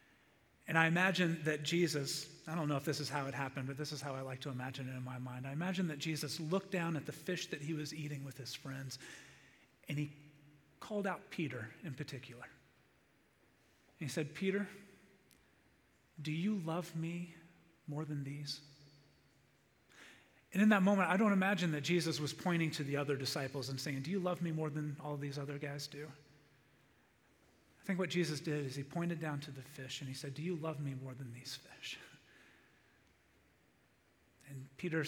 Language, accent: English, American